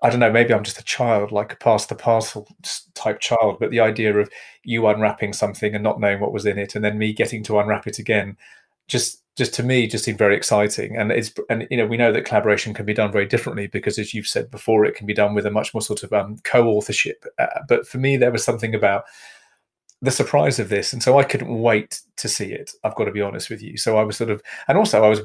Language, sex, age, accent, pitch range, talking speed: English, male, 30-49, British, 105-120 Hz, 265 wpm